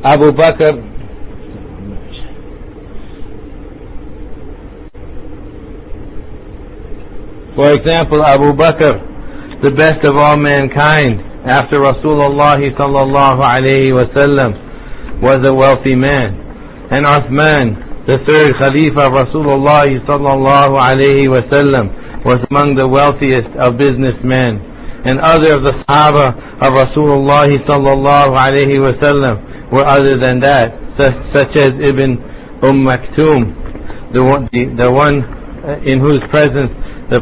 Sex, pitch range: male, 130-145 Hz